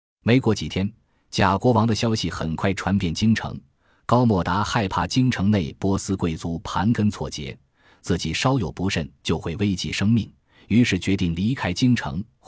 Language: Chinese